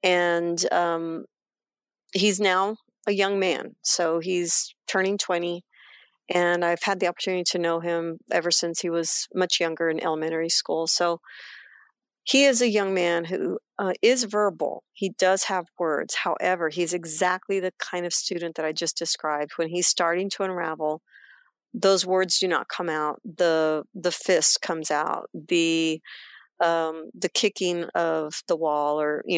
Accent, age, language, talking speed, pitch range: American, 40-59, English, 160 wpm, 165-195 Hz